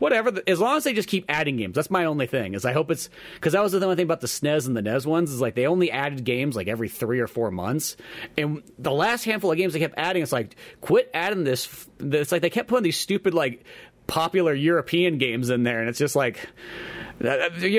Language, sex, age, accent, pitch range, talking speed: English, male, 30-49, American, 120-165 Hz, 250 wpm